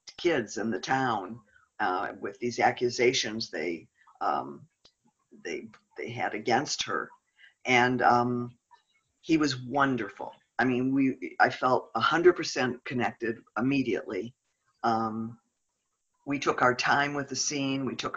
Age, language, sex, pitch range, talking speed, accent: 50-69, English, female, 120-155 Hz, 130 wpm, American